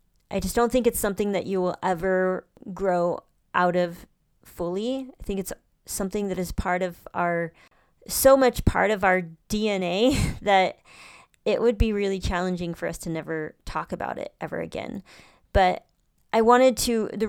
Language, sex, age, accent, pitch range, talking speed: English, female, 20-39, American, 185-210 Hz, 170 wpm